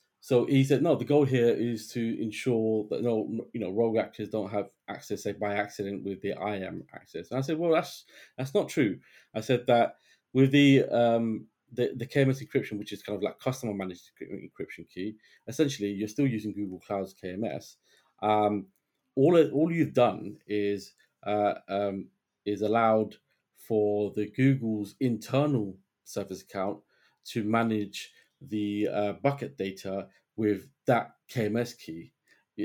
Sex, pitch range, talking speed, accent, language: male, 105-130 Hz, 160 wpm, British, English